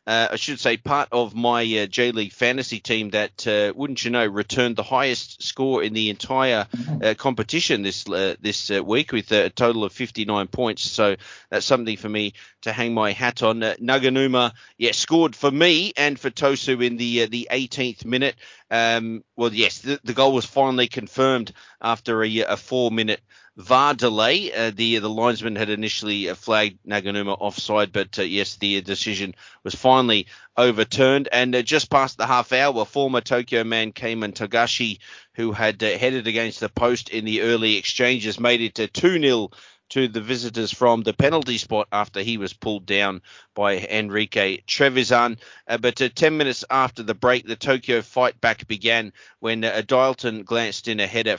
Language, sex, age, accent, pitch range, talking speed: English, male, 30-49, Australian, 110-125 Hz, 180 wpm